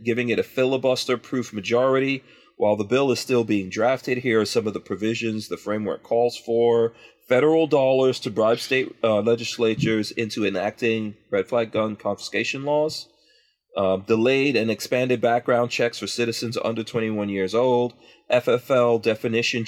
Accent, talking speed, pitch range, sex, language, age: American, 155 wpm, 105-125 Hz, male, English, 40-59